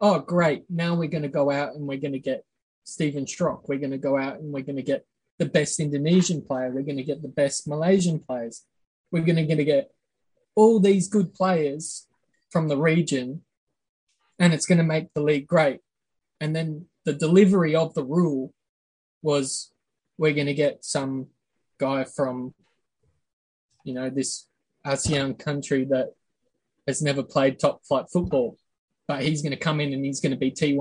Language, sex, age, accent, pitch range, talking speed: English, male, 20-39, Australian, 140-170 Hz, 185 wpm